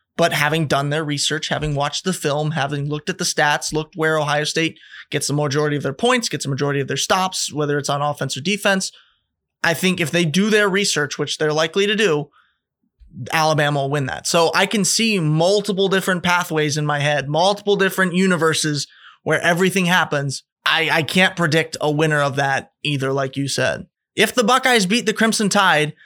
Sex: male